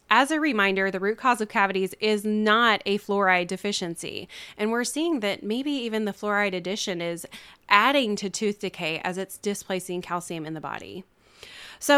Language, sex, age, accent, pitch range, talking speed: English, female, 20-39, American, 190-240 Hz, 175 wpm